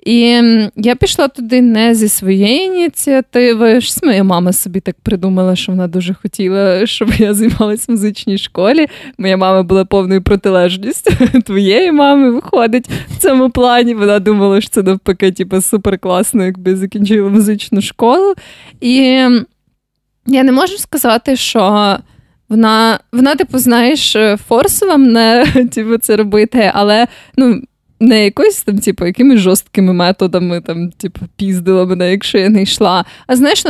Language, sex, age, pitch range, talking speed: Ukrainian, female, 20-39, 200-255 Hz, 140 wpm